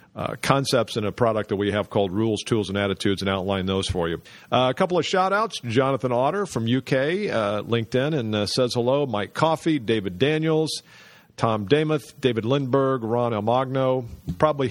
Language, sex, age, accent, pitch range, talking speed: English, male, 50-69, American, 95-125 Hz, 185 wpm